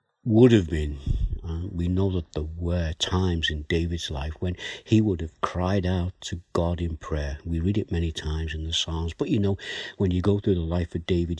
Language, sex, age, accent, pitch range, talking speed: English, male, 60-79, British, 80-95 Hz, 220 wpm